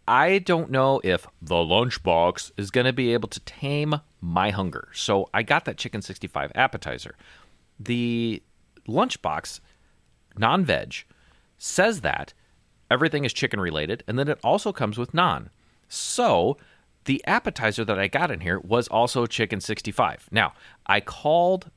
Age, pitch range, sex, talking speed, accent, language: 30-49, 90-120 Hz, male, 145 wpm, American, English